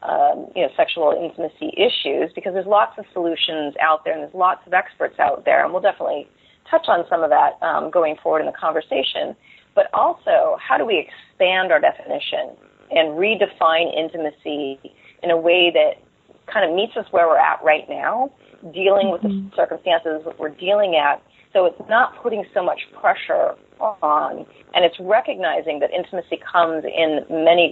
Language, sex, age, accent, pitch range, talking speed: English, female, 30-49, American, 165-205 Hz, 180 wpm